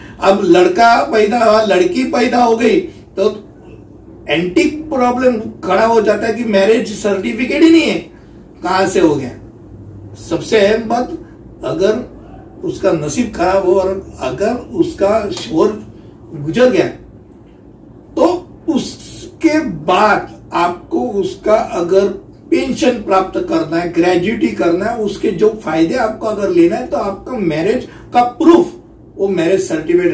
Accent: native